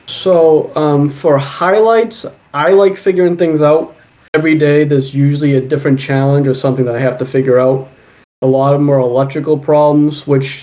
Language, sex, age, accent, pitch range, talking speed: English, male, 20-39, American, 130-155 Hz, 175 wpm